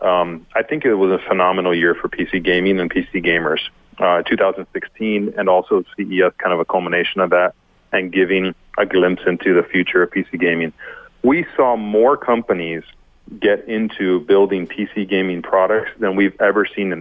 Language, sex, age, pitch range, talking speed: English, male, 30-49, 95-110 Hz, 175 wpm